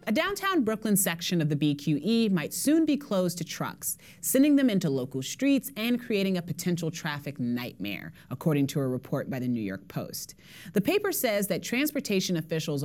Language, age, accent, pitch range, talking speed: English, 30-49, American, 145-220 Hz, 180 wpm